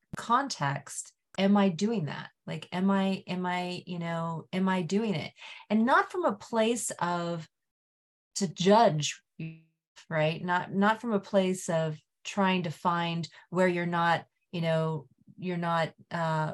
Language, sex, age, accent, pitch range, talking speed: English, female, 30-49, American, 160-190 Hz, 150 wpm